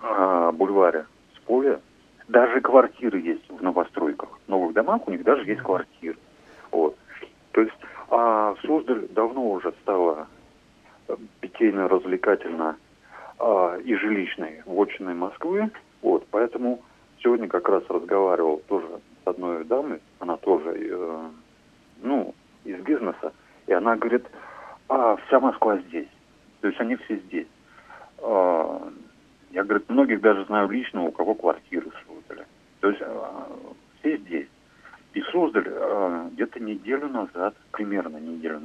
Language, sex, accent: Russian, male, native